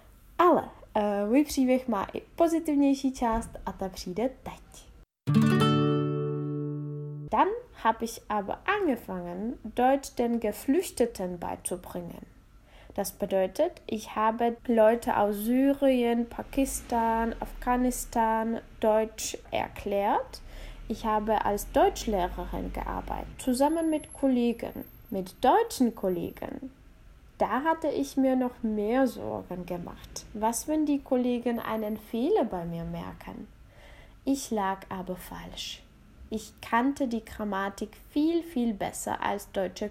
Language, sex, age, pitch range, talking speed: Czech, female, 10-29, 200-265 Hz, 95 wpm